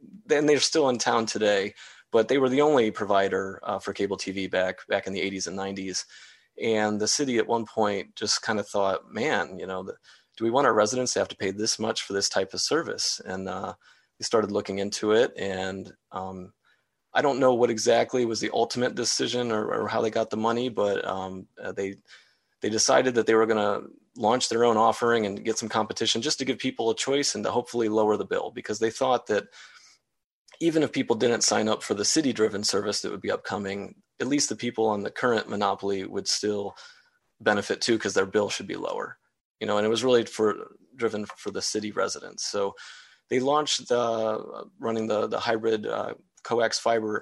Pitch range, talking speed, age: 100-120 Hz, 215 wpm, 30-49